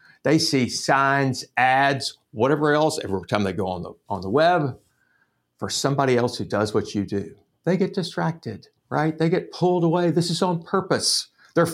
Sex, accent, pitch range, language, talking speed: male, American, 120-170 Hz, English, 185 wpm